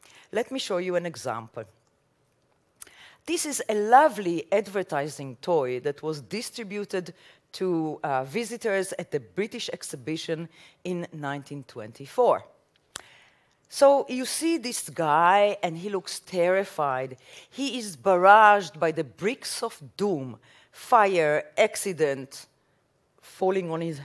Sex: female